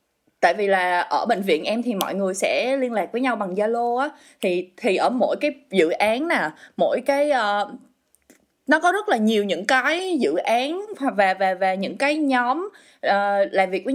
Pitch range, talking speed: 195-285 Hz, 205 wpm